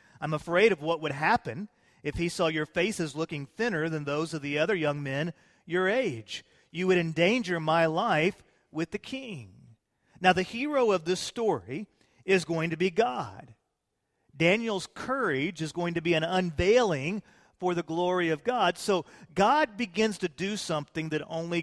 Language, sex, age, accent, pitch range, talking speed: English, male, 40-59, American, 155-205 Hz, 170 wpm